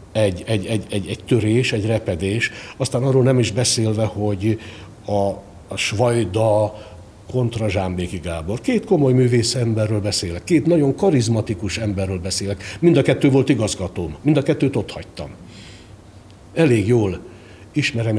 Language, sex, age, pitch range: Hungarian, male, 60-79, 100-125 Hz